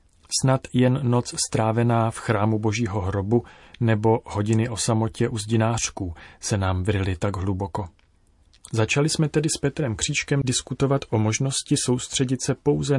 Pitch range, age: 95-125 Hz, 40-59